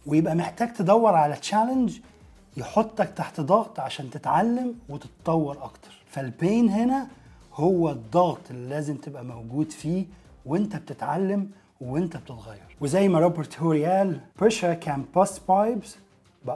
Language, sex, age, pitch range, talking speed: Arabic, male, 30-49, 140-195 Hz, 105 wpm